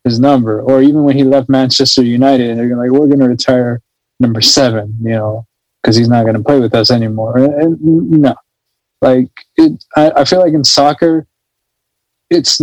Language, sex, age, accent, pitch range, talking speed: English, male, 20-39, American, 115-140 Hz, 175 wpm